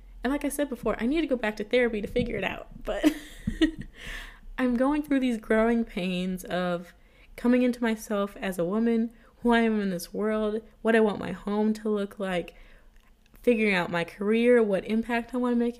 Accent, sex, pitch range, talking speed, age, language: American, female, 205-255 Hz, 205 wpm, 20-39, English